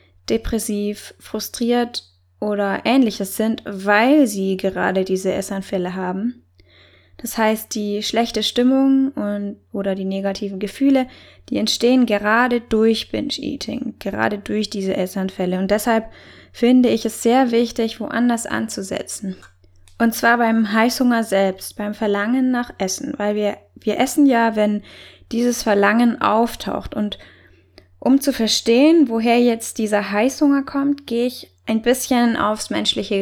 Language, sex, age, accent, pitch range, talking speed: German, female, 20-39, German, 195-240 Hz, 130 wpm